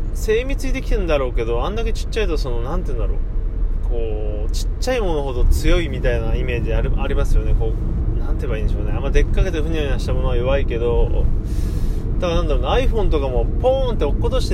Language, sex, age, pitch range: Japanese, male, 20-39, 85-115 Hz